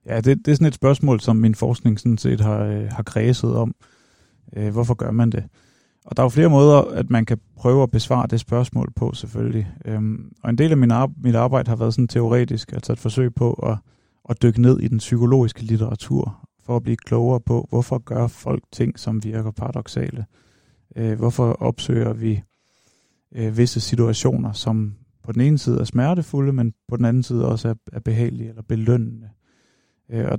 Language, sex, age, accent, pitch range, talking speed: Danish, male, 30-49, native, 110-125 Hz, 195 wpm